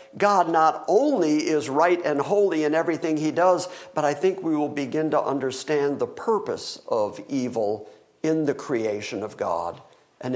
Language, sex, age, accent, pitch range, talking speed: English, male, 50-69, American, 140-185 Hz, 170 wpm